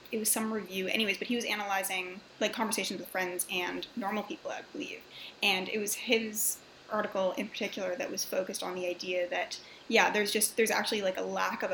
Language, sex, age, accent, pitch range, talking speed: English, female, 20-39, American, 190-240 Hz, 210 wpm